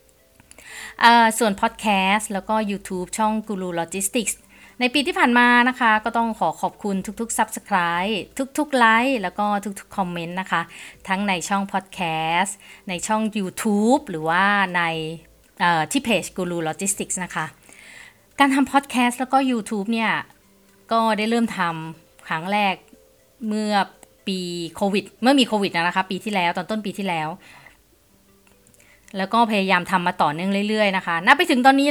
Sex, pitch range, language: female, 180-230 Hz, Thai